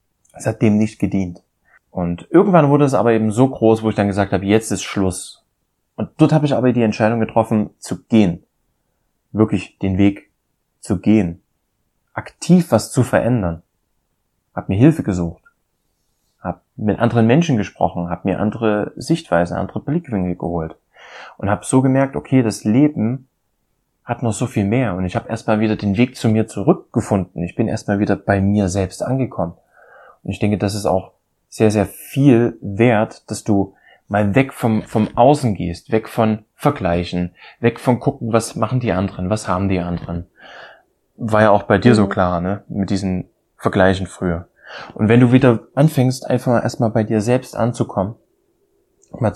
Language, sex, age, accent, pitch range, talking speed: German, male, 20-39, German, 95-120 Hz, 175 wpm